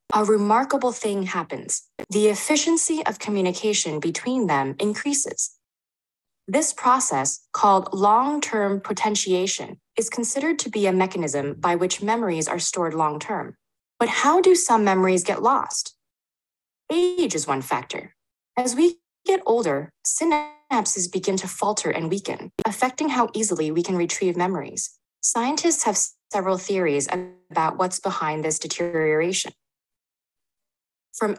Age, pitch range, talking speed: 20-39, 170-235 Hz, 125 wpm